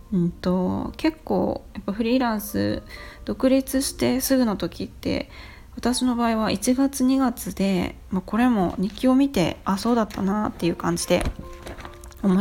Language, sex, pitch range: Japanese, female, 185-240 Hz